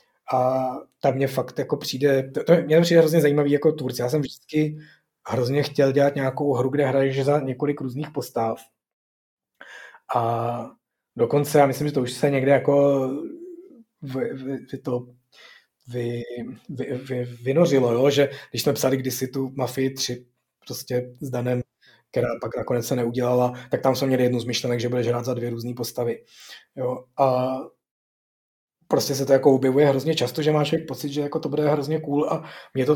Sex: male